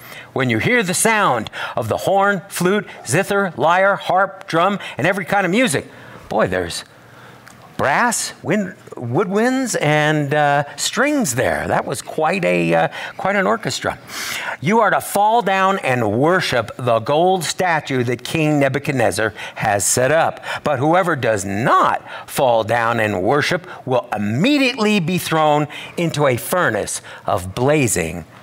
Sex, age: male, 50-69